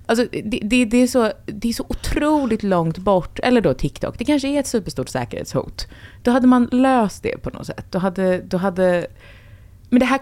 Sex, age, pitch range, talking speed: female, 20-39, 175-245 Hz, 210 wpm